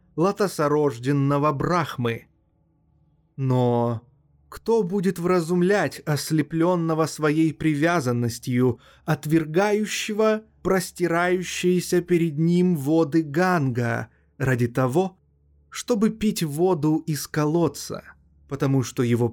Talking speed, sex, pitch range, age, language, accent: 80 wpm, male, 120-175 Hz, 20-39, Russian, native